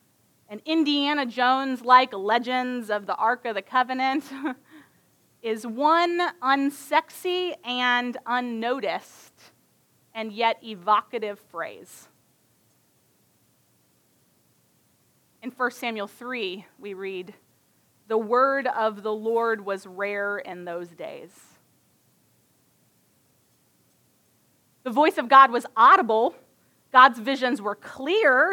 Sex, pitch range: female, 215-280 Hz